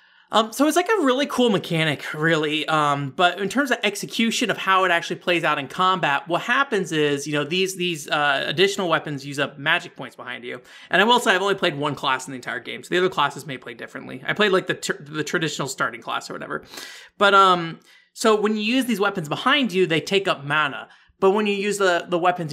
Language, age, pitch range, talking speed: English, 20-39, 140-195 Hz, 240 wpm